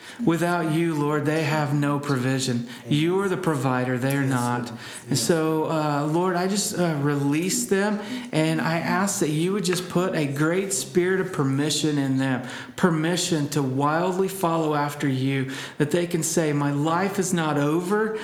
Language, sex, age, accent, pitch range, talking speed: English, male, 40-59, American, 145-180 Hz, 175 wpm